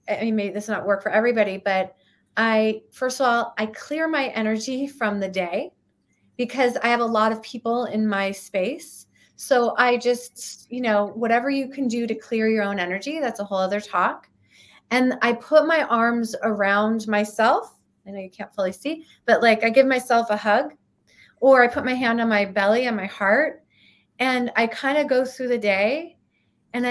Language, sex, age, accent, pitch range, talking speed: English, female, 30-49, American, 210-255 Hz, 200 wpm